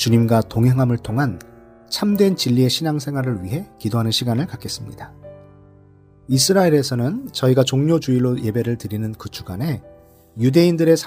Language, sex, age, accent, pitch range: Korean, male, 40-59, native, 115-160 Hz